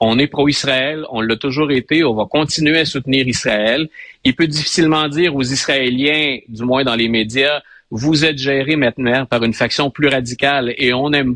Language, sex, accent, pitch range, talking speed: French, male, Canadian, 120-150 Hz, 190 wpm